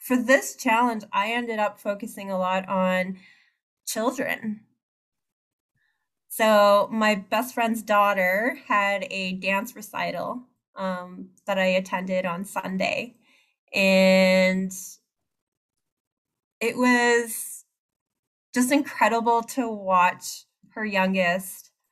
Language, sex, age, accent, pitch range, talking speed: English, female, 20-39, American, 190-245 Hz, 95 wpm